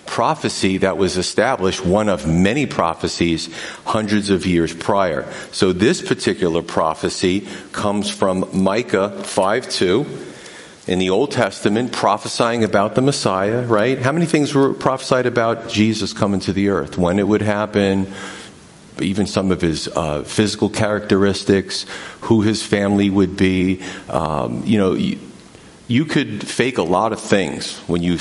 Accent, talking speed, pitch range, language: American, 145 wpm, 95-115 Hz, English